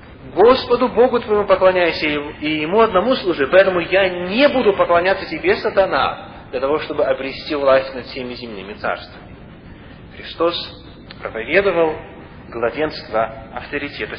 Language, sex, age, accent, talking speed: Russian, male, 30-49, native, 120 wpm